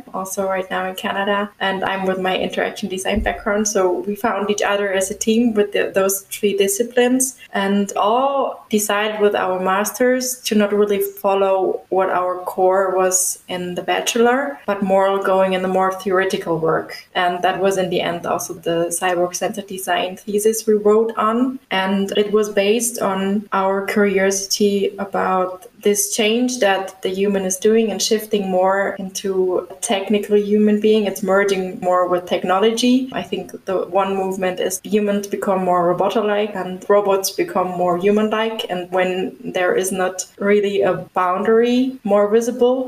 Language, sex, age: English, female, 20-39